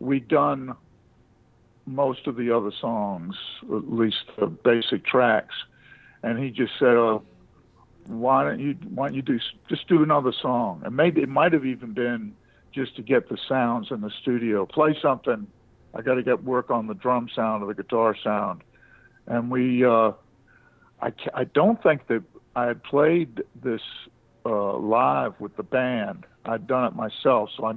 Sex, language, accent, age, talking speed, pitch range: male, English, American, 60-79, 175 wpm, 115-130 Hz